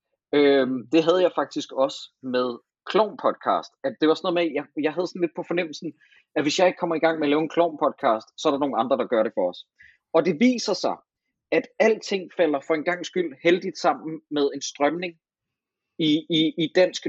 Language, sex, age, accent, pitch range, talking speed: Danish, male, 30-49, native, 145-180 Hz, 220 wpm